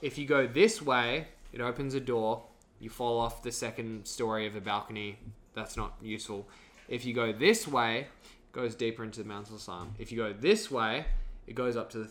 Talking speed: 220 wpm